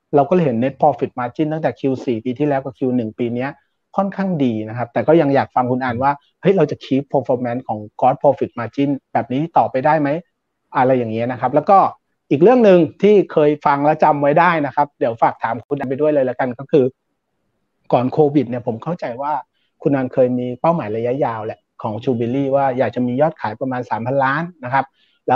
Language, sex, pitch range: Thai, male, 125-155 Hz